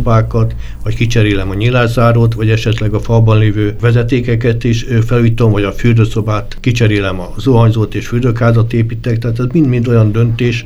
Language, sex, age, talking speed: Hungarian, male, 60-79, 150 wpm